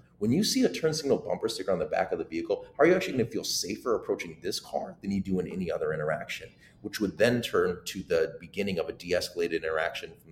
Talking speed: 250 wpm